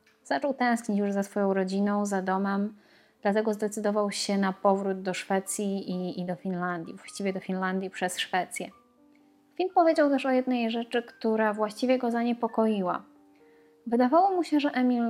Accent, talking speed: native, 155 wpm